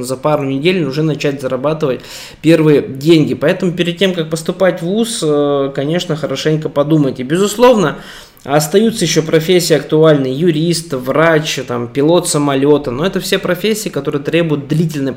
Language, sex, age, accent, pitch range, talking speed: Russian, male, 20-39, native, 135-165 Hz, 140 wpm